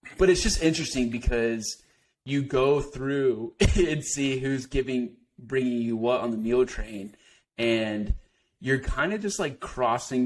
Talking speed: 150 wpm